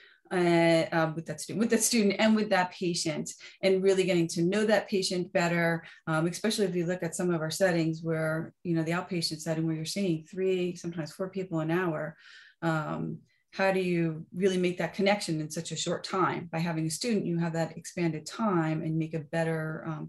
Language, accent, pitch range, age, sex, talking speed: English, American, 160-190 Hz, 30-49, female, 215 wpm